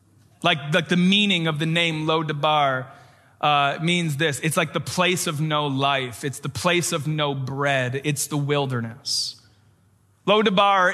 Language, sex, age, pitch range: English, male, 30-49, 130-180 Hz